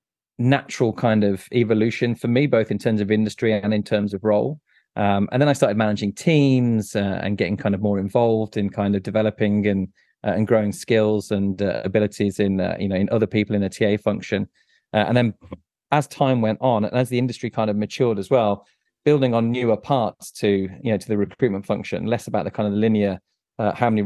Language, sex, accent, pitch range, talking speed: English, male, British, 100-115 Hz, 220 wpm